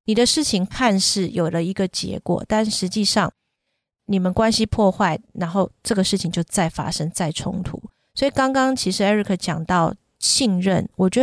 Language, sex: Chinese, female